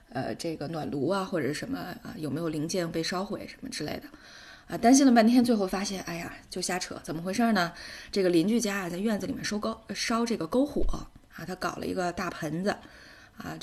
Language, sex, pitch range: Chinese, female, 165-210 Hz